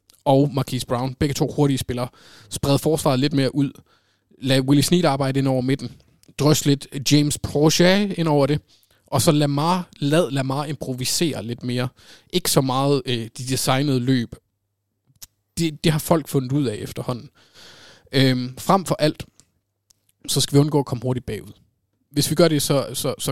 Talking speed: 165 wpm